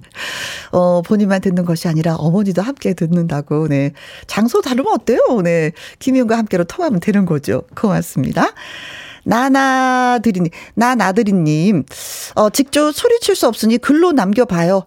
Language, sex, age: Korean, female, 40-59